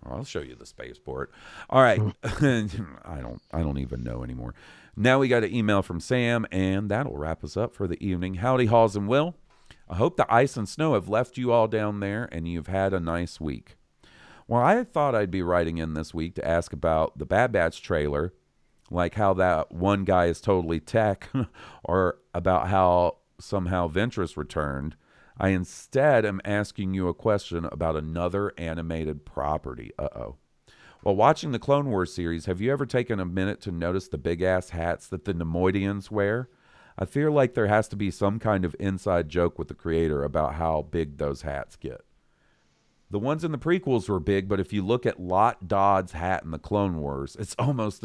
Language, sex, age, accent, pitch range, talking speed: English, male, 40-59, American, 85-110 Hz, 195 wpm